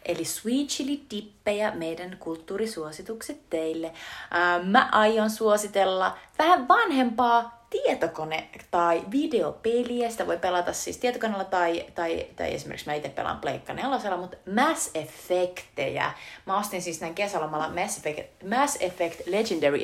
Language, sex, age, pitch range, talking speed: Finnish, female, 30-49, 155-205 Hz, 120 wpm